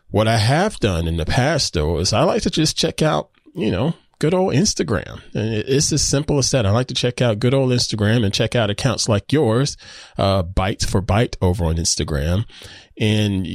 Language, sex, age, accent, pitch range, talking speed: English, male, 20-39, American, 95-120 Hz, 215 wpm